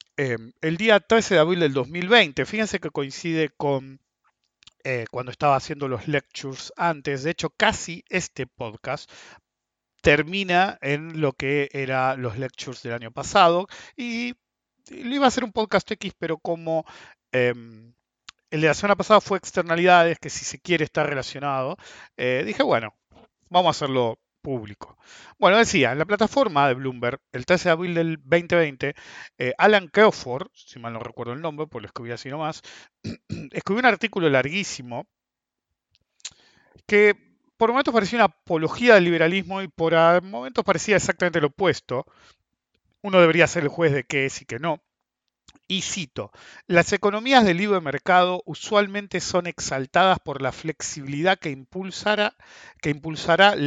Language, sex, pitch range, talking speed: English, male, 135-185 Hz, 155 wpm